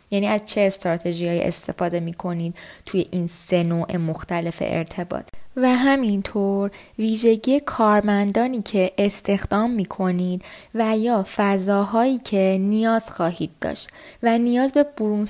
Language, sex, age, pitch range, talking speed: Persian, female, 20-39, 195-240 Hz, 120 wpm